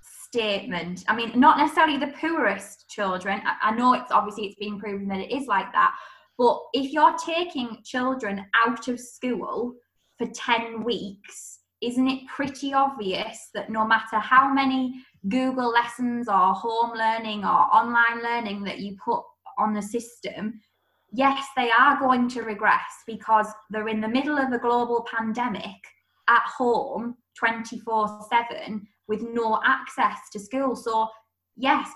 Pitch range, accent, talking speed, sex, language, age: 215-265 Hz, British, 150 wpm, female, English, 20-39